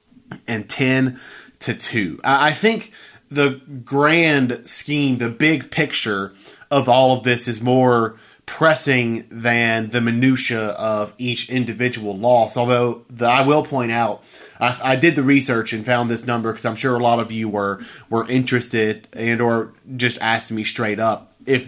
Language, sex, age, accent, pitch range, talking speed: English, male, 20-39, American, 115-140 Hz, 165 wpm